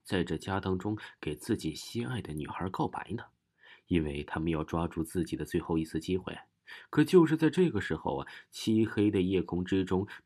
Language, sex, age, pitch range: Chinese, male, 30-49, 80-115 Hz